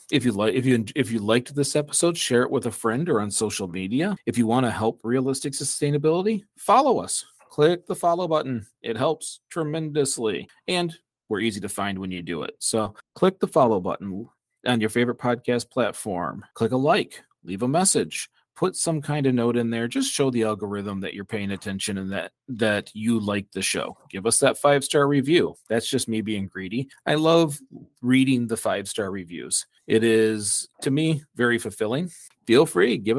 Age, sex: 40-59, male